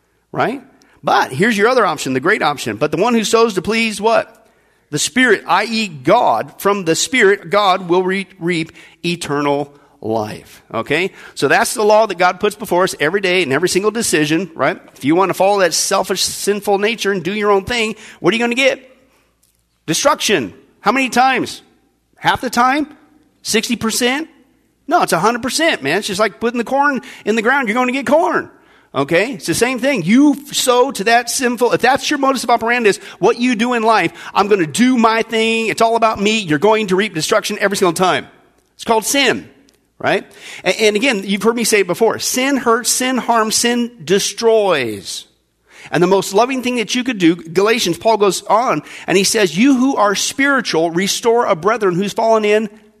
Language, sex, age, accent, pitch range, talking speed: English, male, 40-59, American, 190-245 Hz, 200 wpm